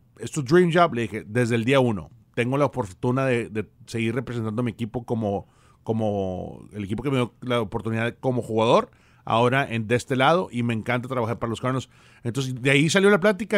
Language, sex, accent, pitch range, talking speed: English, male, Mexican, 120-145 Hz, 210 wpm